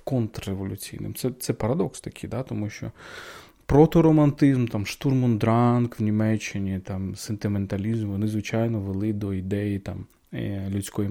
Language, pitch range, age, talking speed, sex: Ukrainian, 100-130 Hz, 30-49, 115 wpm, male